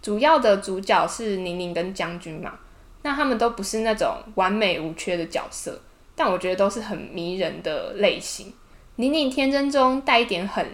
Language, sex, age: Chinese, female, 10-29